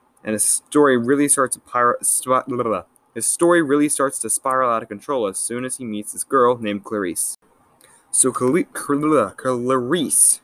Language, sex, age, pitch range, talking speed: English, male, 20-39, 110-135 Hz, 155 wpm